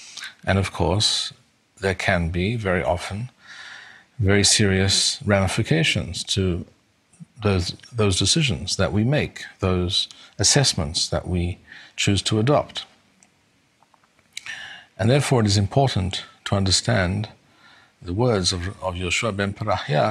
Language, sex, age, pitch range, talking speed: English, male, 50-69, 90-115 Hz, 115 wpm